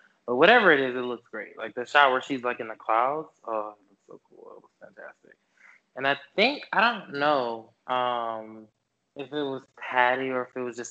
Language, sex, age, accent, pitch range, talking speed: English, male, 20-39, American, 110-140 Hz, 220 wpm